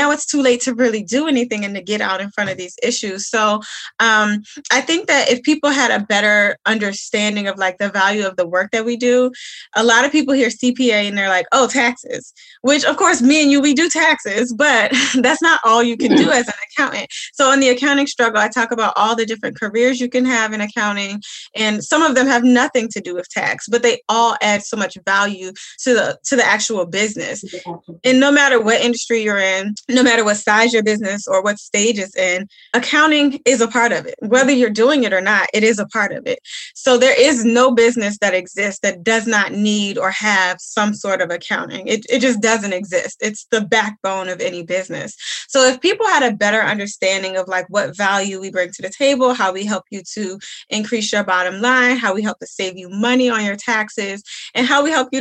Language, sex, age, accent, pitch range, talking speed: English, female, 10-29, American, 200-255 Hz, 230 wpm